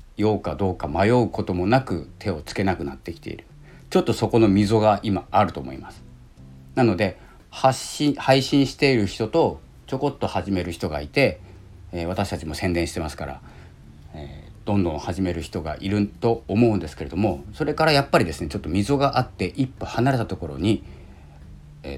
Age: 40-59